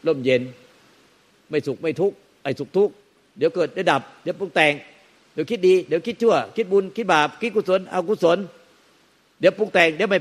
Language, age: Thai, 60-79